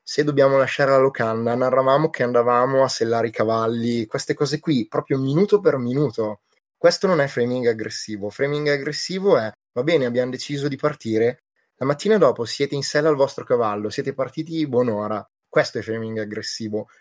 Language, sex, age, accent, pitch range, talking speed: Italian, male, 20-39, native, 115-145 Hz, 175 wpm